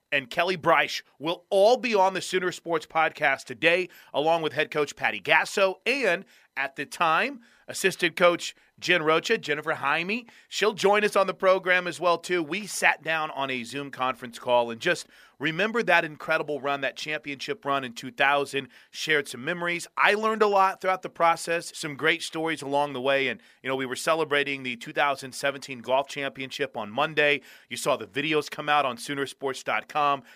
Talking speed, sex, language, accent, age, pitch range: 180 wpm, male, English, American, 30-49, 130-175 Hz